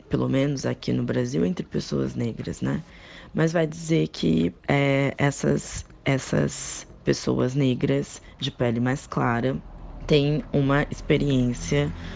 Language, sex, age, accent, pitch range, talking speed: Portuguese, female, 20-39, Brazilian, 125-165 Hz, 125 wpm